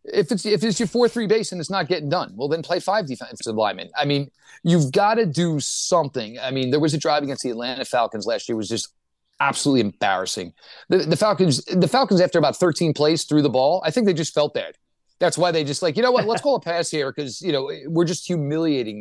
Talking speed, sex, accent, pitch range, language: 250 wpm, male, American, 130-185 Hz, English